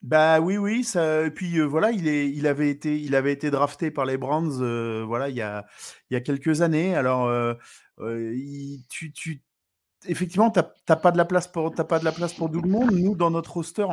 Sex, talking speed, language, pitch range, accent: male, 235 wpm, French, 130-170 Hz, French